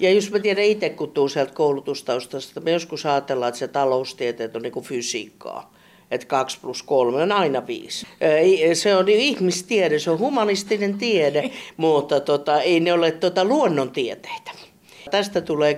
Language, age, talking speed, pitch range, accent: Finnish, 50-69, 155 wpm, 135-180 Hz, native